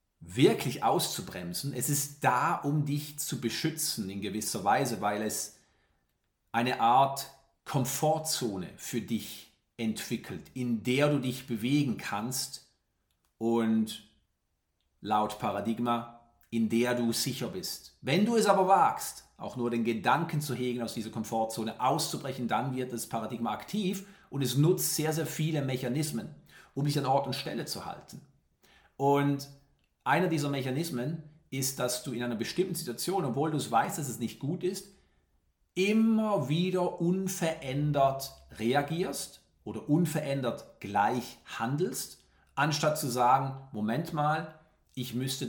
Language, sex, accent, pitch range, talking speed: German, male, German, 115-155 Hz, 135 wpm